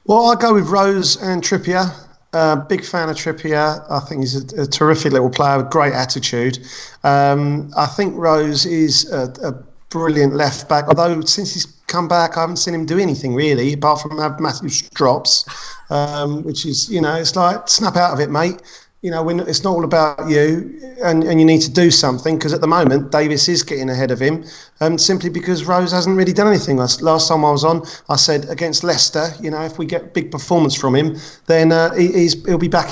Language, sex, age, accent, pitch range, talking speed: English, male, 40-59, British, 145-175 Hz, 220 wpm